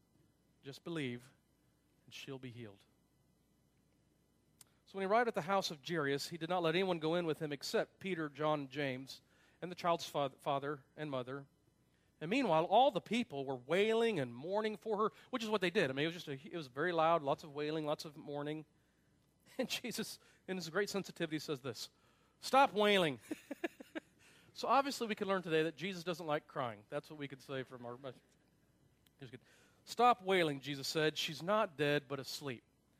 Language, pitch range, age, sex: English, 150-205 Hz, 40-59, male